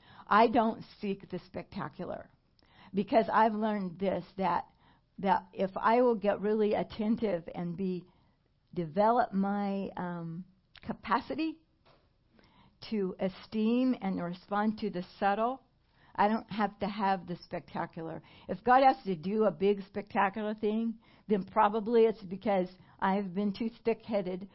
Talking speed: 130 wpm